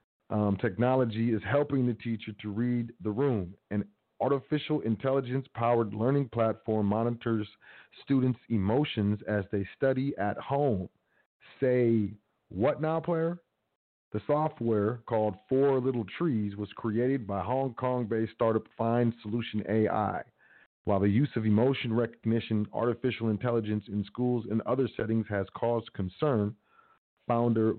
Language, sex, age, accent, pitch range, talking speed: English, male, 40-59, American, 105-130 Hz, 125 wpm